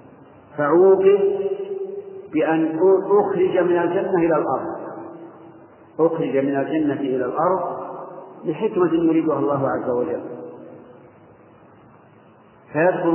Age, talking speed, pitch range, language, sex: 50-69, 80 wpm, 155-185 Hz, Arabic, male